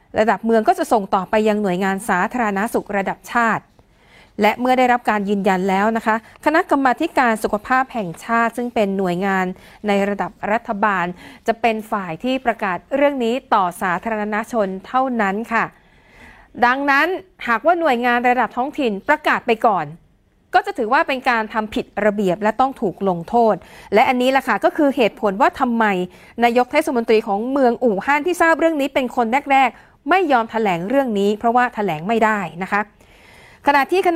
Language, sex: Thai, female